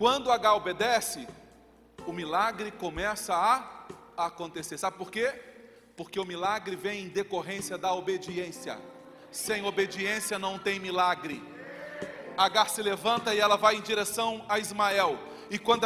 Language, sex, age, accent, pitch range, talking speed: Portuguese, male, 40-59, Brazilian, 215-300 Hz, 135 wpm